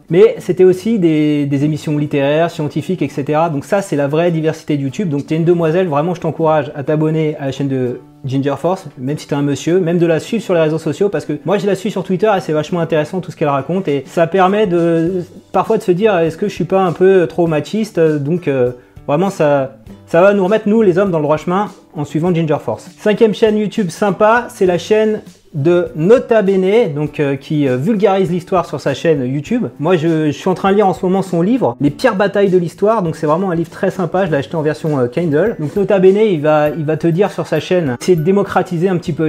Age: 30-49